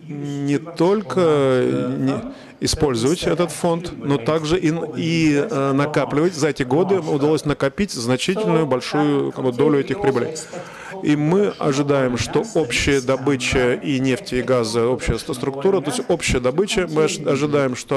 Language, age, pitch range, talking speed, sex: Russian, 30-49, 130-160 Hz, 125 wpm, male